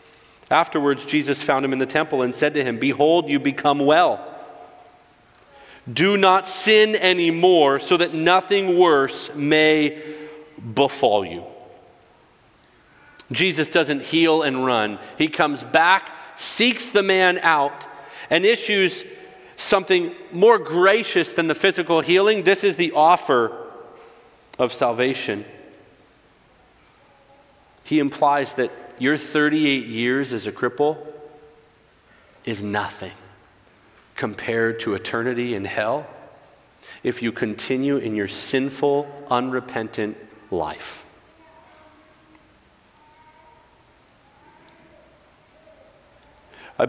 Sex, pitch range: male, 110-155 Hz